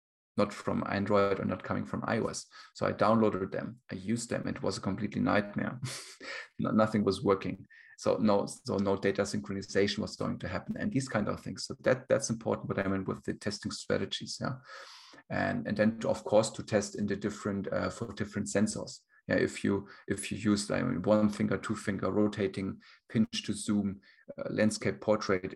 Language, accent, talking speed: English, German, 200 wpm